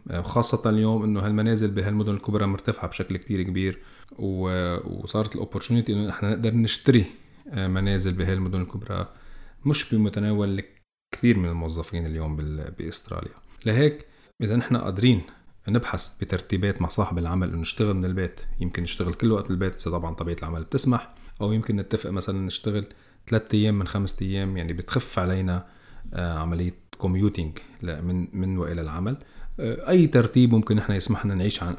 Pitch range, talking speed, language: 85-110 Hz, 140 wpm, Arabic